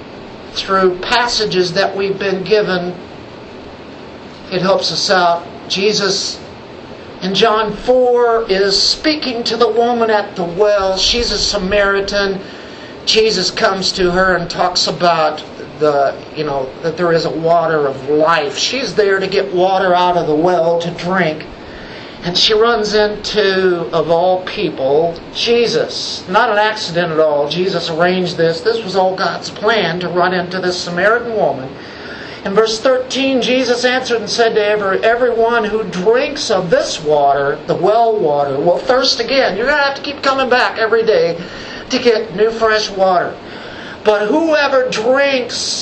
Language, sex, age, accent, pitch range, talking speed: English, male, 50-69, American, 180-230 Hz, 155 wpm